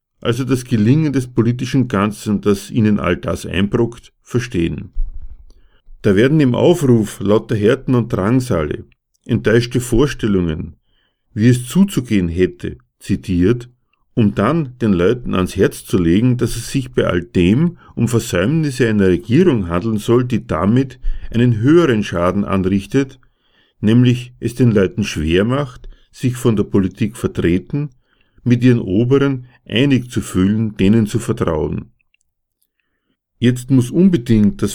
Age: 50-69